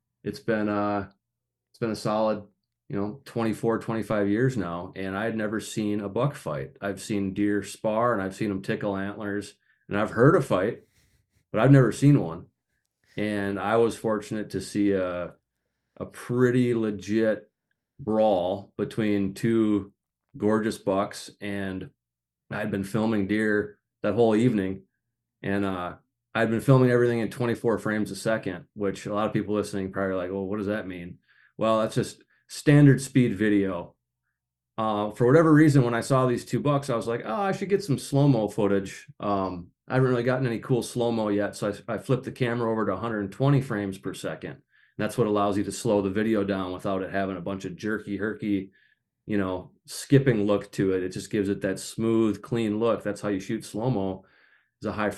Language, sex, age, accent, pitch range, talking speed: English, male, 30-49, American, 100-115 Hz, 190 wpm